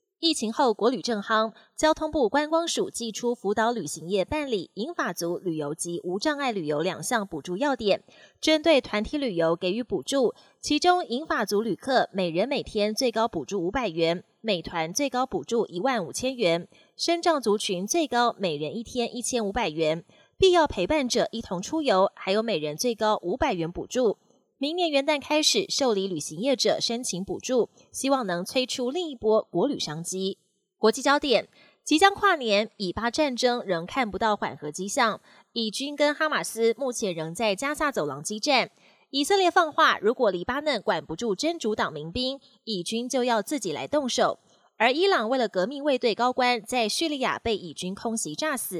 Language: Chinese